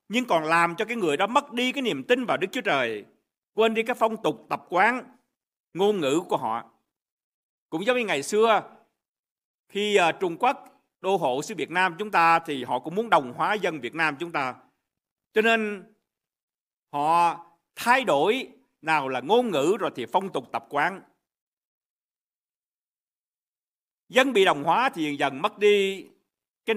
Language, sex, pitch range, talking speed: Vietnamese, male, 150-230 Hz, 175 wpm